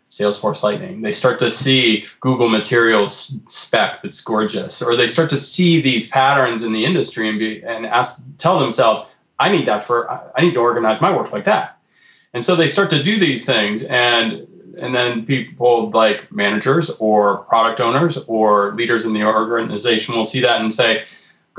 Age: 30-49